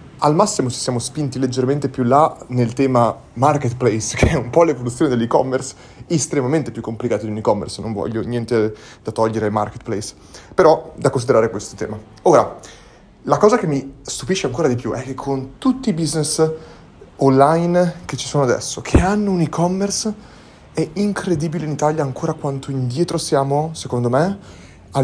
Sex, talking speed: male, 170 wpm